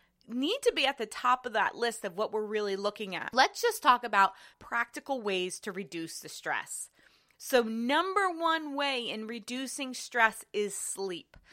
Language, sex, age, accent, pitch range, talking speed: English, female, 30-49, American, 195-270 Hz, 175 wpm